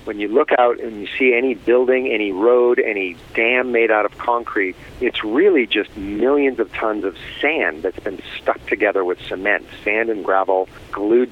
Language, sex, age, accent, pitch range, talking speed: English, male, 50-69, American, 100-125 Hz, 185 wpm